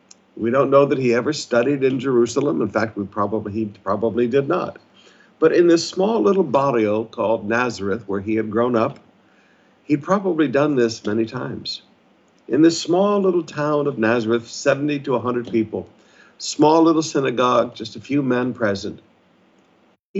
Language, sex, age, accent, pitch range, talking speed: English, male, 60-79, American, 110-150 Hz, 165 wpm